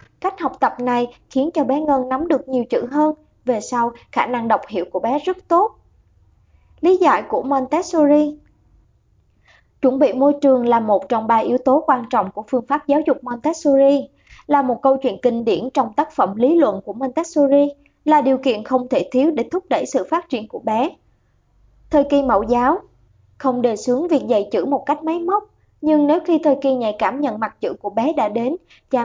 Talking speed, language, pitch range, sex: 210 wpm, Vietnamese, 245-295 Hz, male